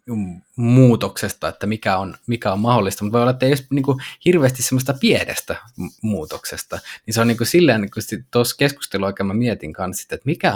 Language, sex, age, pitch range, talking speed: Finnish, male, 20-39, 100-125 Hz, 170 wpm